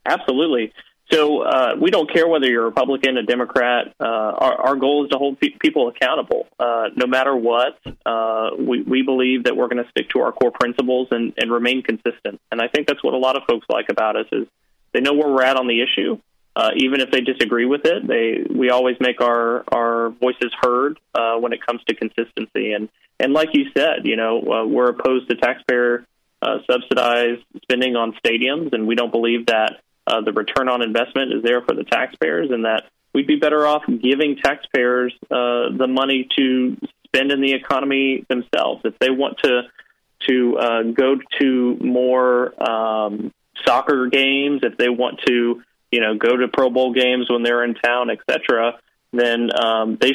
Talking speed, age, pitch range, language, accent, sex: 195 wpm, 30-49, 120-130 Hz, English, American, male